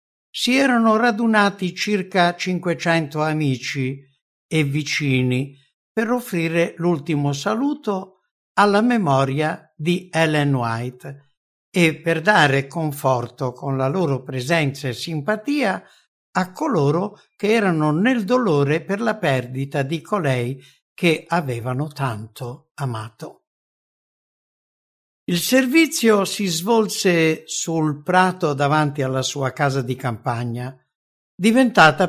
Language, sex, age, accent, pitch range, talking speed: English, male, 60-79, Italian, 135-205 Hz, 105 wpm